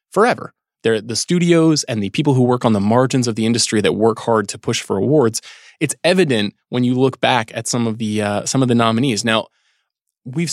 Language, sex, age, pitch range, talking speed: English, male, 20-39, 110-150 Hz, 220 wpm